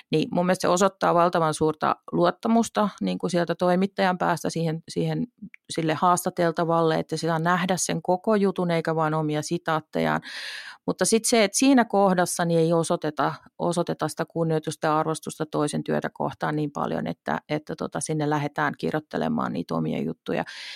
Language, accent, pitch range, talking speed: Finnish, native, 155-200 Hz, 155 wpm